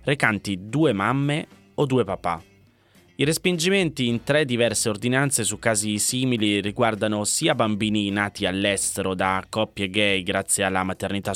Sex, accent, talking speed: male, native, 135 wpm